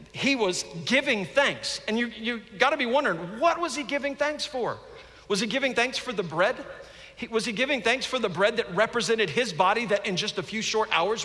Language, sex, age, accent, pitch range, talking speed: English, male, 50-69, American, 145-230 Hz, 220 wpm